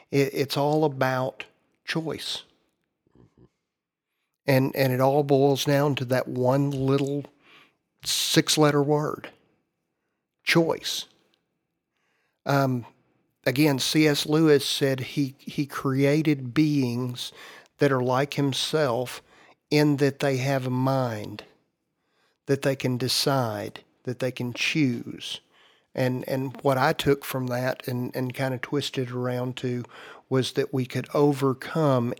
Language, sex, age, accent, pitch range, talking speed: English, male, 50-69, American, 125-140 Hz, 120 wpm